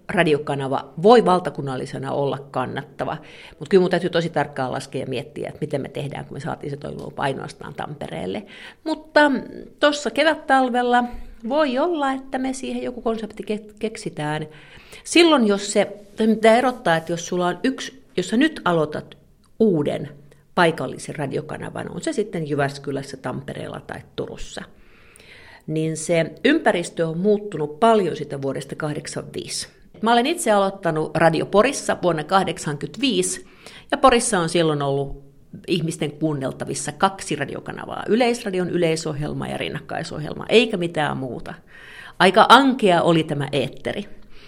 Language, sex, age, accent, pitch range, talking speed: Finnish, female, 50-69, native, 150-220 Hz, 130 wpm